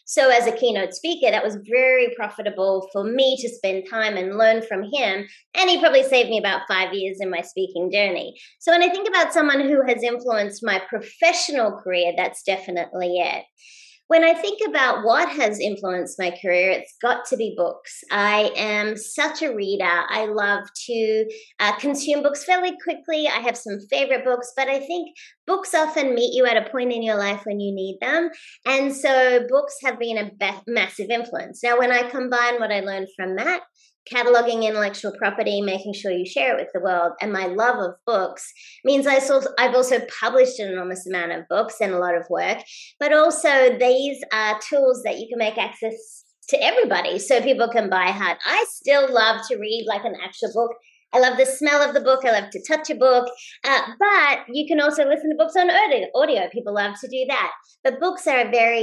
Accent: Australian